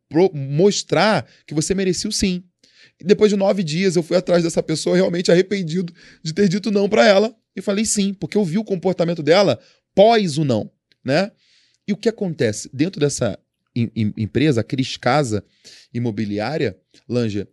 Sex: male